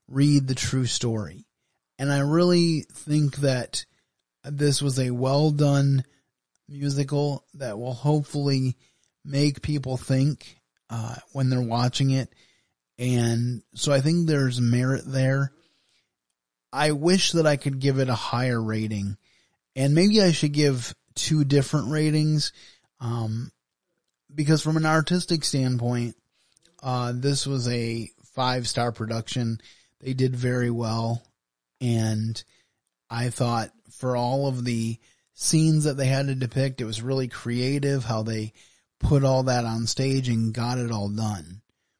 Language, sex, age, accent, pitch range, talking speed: English, male, 30-49, American, 115-140 Hz, 140 wpm